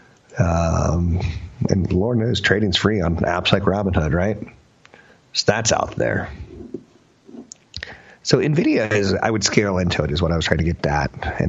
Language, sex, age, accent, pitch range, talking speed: English, male, 30-49, American, 90-115 Hz, 160 wpm